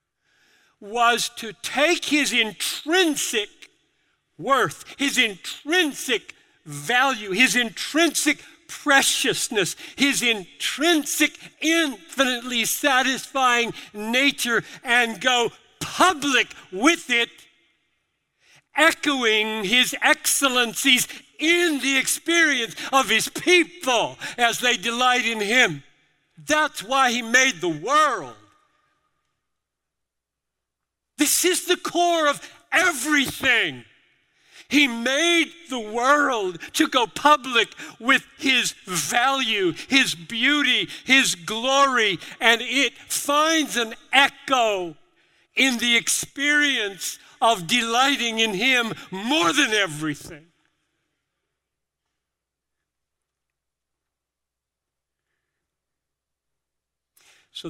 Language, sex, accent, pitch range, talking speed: English, male, American, 220-295 Hz, 80 wpm